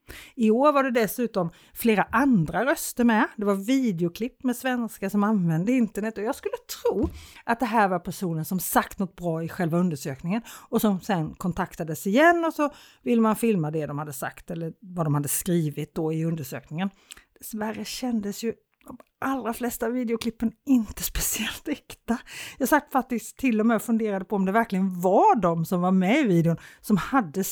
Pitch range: 180-245 Hz